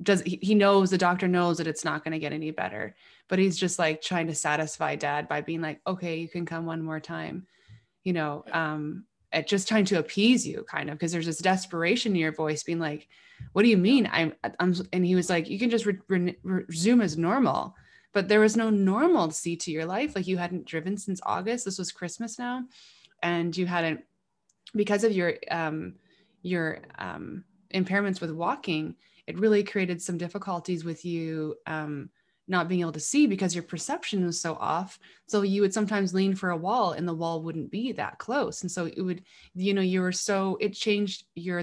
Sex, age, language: female, 20-39, English